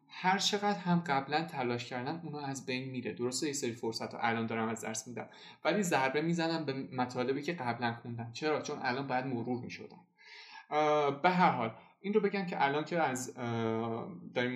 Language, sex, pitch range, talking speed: Persian, male, 120-155 Hz, 185 wpm